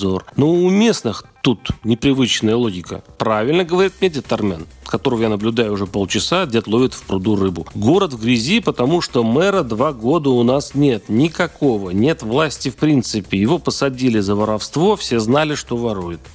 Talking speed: 160 wpm